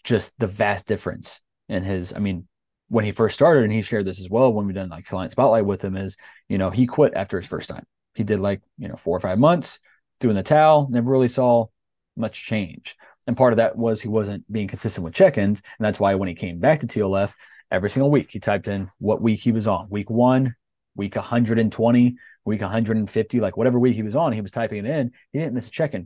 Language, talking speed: English, 240 wpm